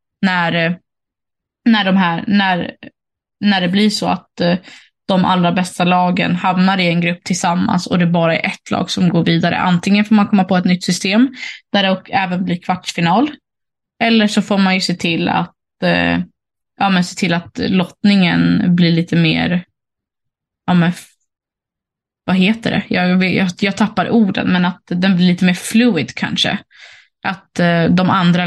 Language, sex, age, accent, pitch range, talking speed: Swedish, female, 20-39, native, 175-200 Hz, 160 wpm